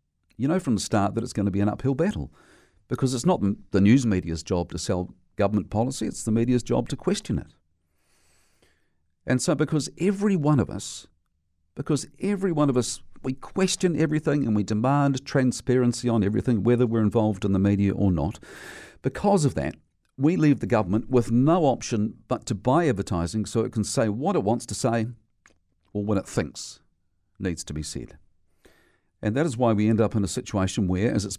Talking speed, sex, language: 200 wpm, male, English